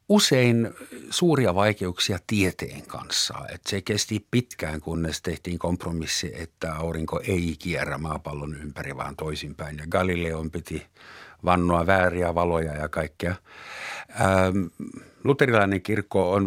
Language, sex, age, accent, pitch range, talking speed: Finnish, male, 50-69, native, 85-115 Hz, 115 wpm